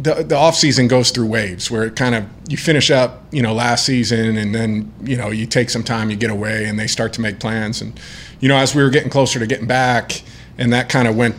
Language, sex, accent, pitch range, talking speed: English, male, American, 115-130 Hz, 270 wpm